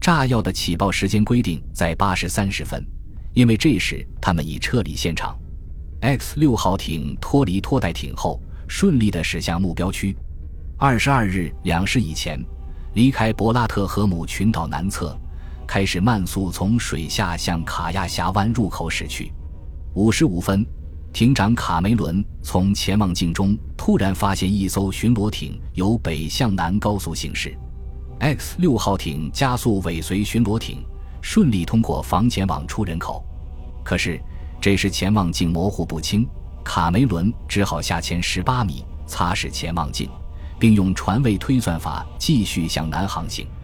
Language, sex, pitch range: Chinese, male, 80-105 Hz